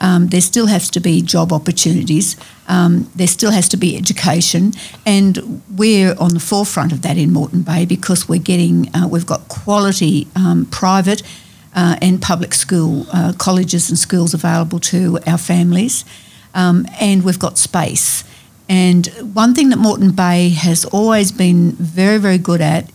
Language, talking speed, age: English, 165 wpm, 60-79